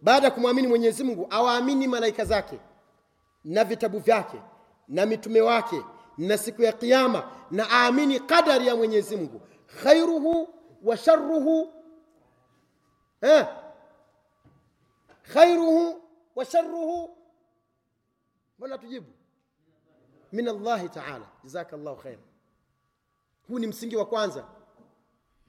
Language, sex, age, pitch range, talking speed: Swahili, male, 40-59, 215-315 Hz, 100 wpm